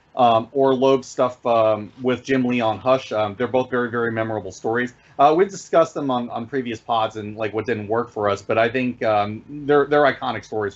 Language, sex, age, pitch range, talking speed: English, male, 30-49, 115-145 Hz, 225 wpm